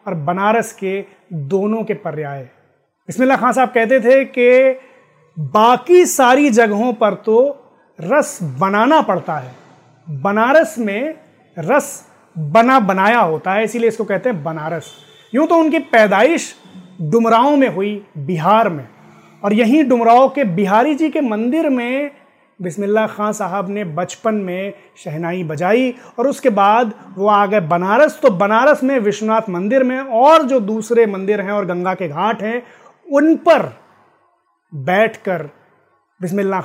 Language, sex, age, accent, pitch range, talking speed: Hindi, male, 30-49, native, 185-255 Hz, 140 wpm